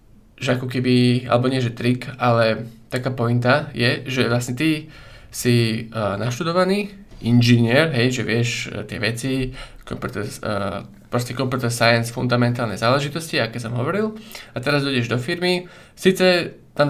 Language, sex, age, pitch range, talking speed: Slovak, male, 20-39, 115-140 Hz, 140 wpm